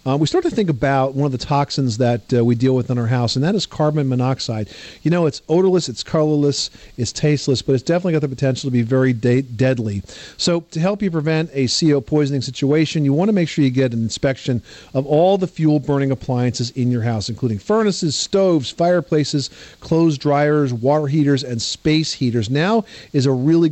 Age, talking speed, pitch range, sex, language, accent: 50-69, 205 wpm, 125-155 Hz, male, English, American